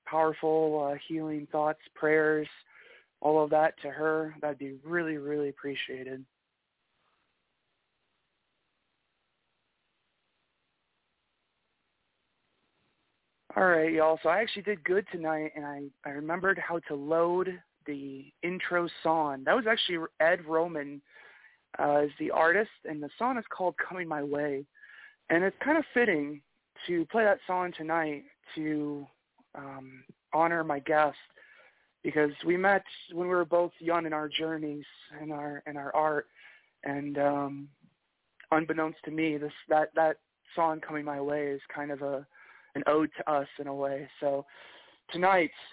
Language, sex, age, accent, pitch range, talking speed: English, male, 40-59, American, 145-170 Hz, 140 wpm